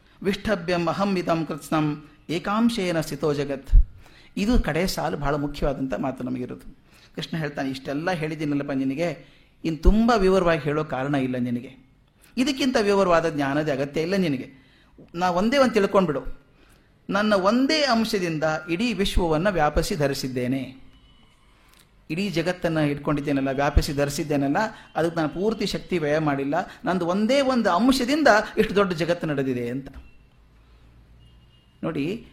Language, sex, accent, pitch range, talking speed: Kannada, male, native, 140-200 Hz, 115 wpm